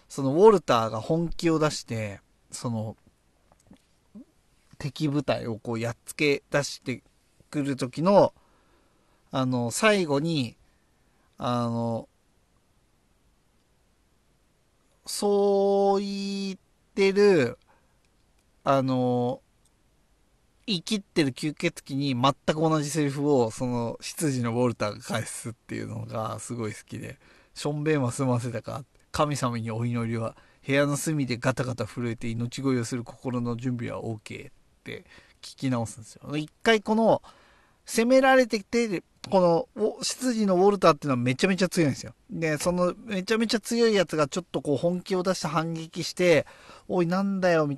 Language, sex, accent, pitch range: Japanese, male, native, 120-175 Hz